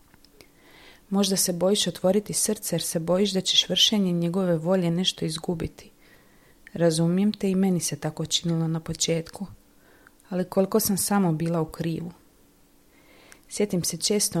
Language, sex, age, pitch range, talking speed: Croatian, female, 30-49, 165-195 Hz, 140 wpm